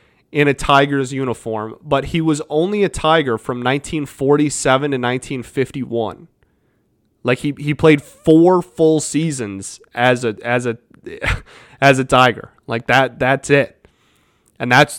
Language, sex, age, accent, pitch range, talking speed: English, male, 30-49, American, 125-150 Hz, 135 wpm